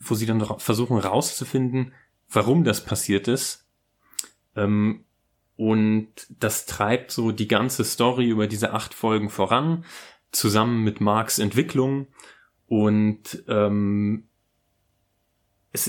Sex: male